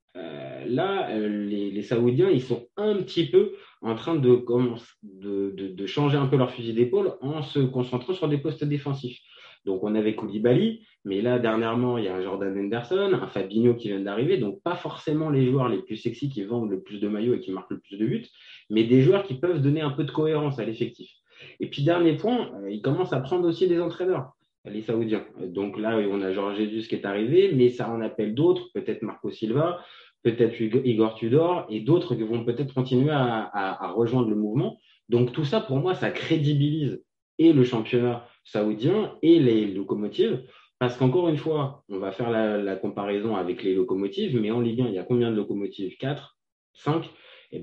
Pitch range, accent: 105-145 Hz, French